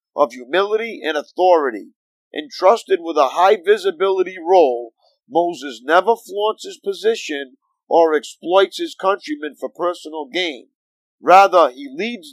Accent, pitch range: American, 150-215 Hz